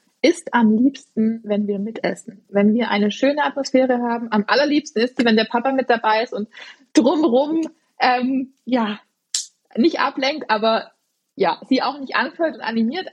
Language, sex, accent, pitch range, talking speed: German, female, German, 215-260 Hz, 165 wpm